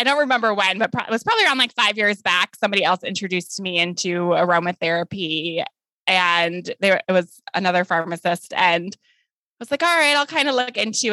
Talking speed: 190 wpm